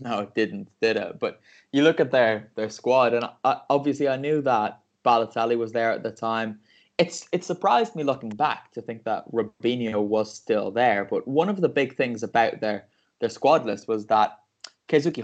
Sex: male